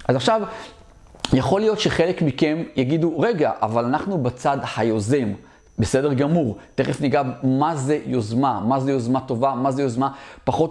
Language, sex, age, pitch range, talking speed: Hebrew, male, 30-49, 125-160 Hz, 150 wpm